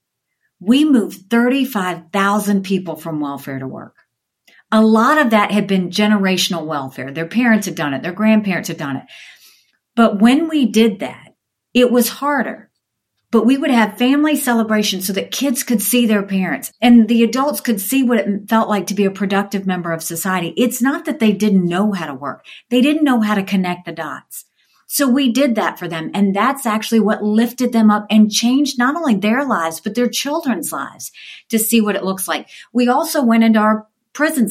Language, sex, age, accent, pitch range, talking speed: English, female, 50-69, American, 185-235 Hz, 200 wpm